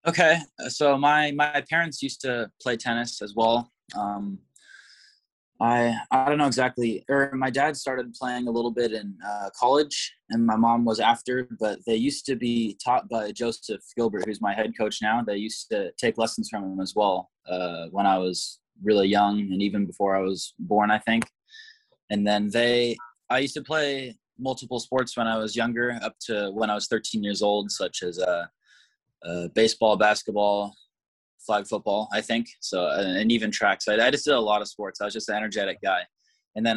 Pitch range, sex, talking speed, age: 105-120 Hz, male, 195 wpm, 20-39